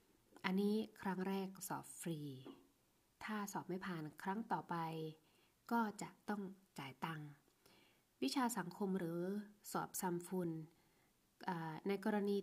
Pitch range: 160-195 Hz